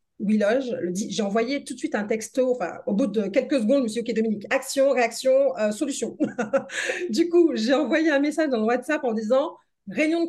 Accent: French